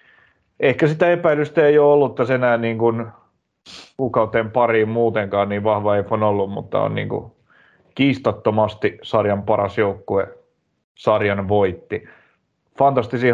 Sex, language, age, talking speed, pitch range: male, Finnish, 30-49, 120 wpm, 100-115 Hz